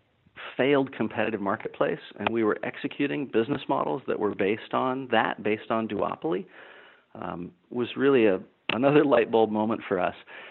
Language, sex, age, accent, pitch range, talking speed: English, male, 40-59, American, 100-120 Hz, 155 wpm